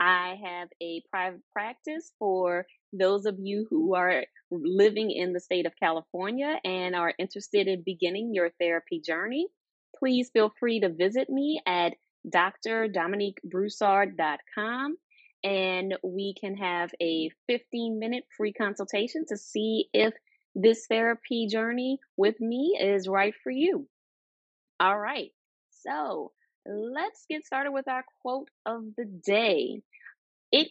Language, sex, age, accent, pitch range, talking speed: English, female, 20-39, American, 190-270 Hz, 130 wpm